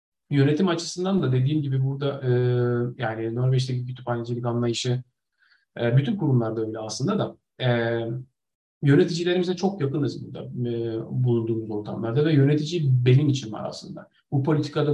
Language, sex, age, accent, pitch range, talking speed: Turkish, male, 40-59, native, 120-155 Hz, 135 wpm